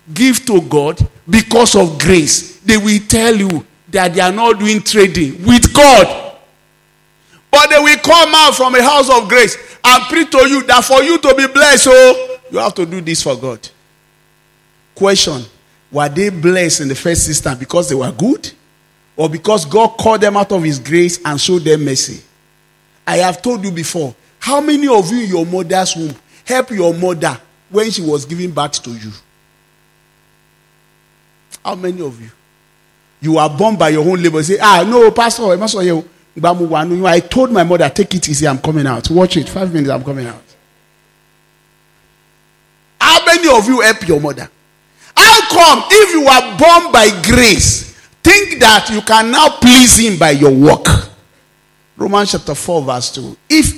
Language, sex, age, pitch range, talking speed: English, male, 50-69, 155-230 Hz, 175 wpm